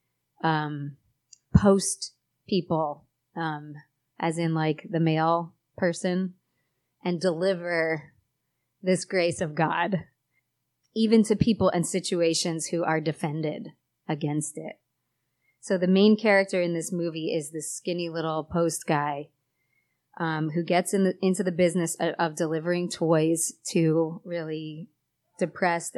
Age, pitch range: 30-49, 155-185 Hz